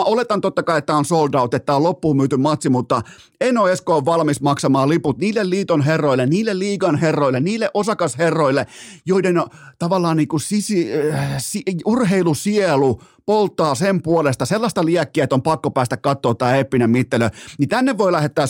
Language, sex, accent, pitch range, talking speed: Finnish, male, native, 135-175 Hz, 160 wpm